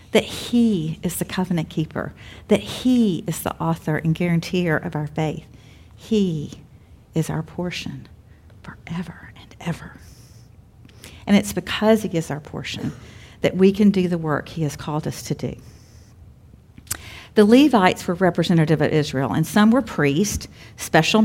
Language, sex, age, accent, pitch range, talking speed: English, female, 50-69, American, 150-195 Hz, 150 wpm